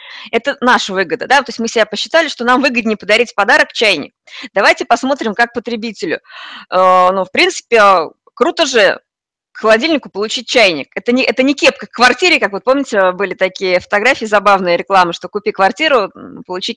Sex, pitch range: female, 200-265 Hz